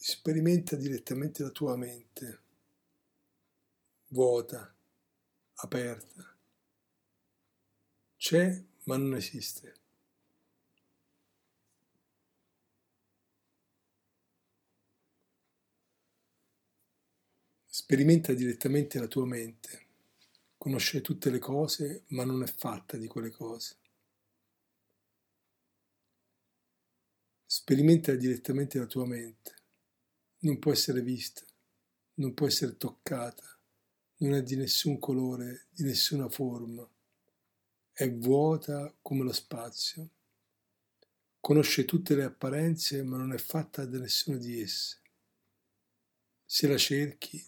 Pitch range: 115-145 Hz